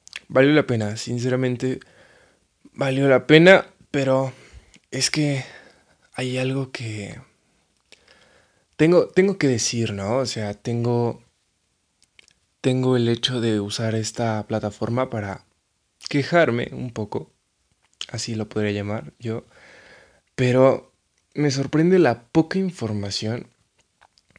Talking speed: 105 wpm